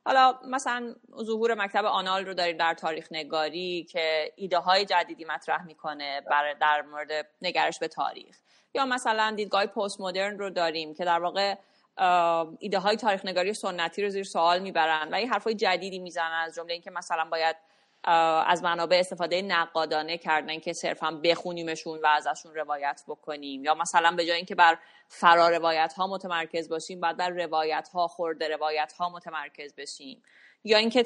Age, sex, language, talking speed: 30-49, female, Persian, 165 wpm